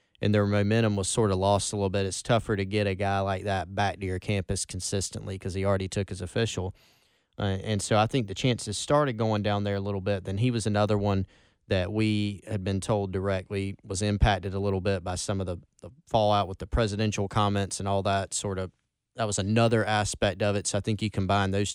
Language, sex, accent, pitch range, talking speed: English, male, American, 95-115 Hz, 235 wpm